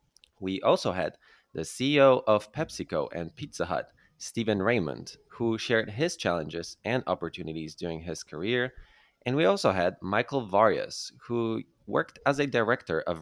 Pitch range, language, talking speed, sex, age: 95-125 Hz, English, 150 wpm, male, 20-39